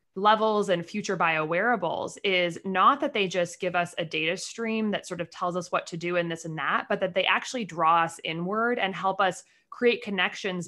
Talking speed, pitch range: 220 wpm, 175-210 Hz